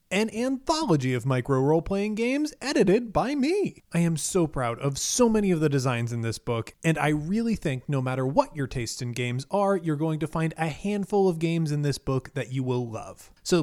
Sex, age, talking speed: male, 30-49, 220 wpm